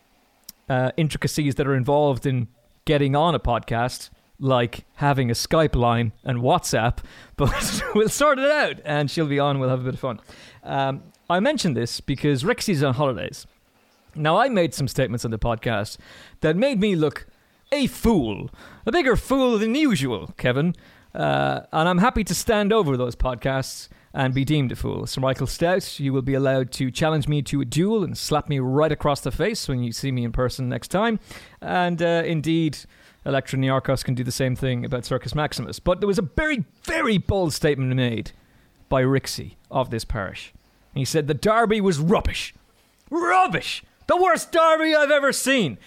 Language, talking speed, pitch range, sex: English, 185 wpm, 130-200 Hz, male